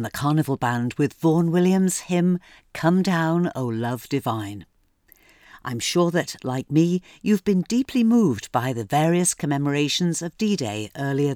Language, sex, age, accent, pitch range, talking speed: English, female, 50-69, British, 135-185 Hz, 150 wpm